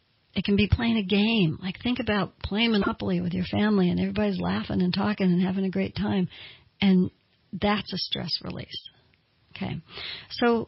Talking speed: 175 wpm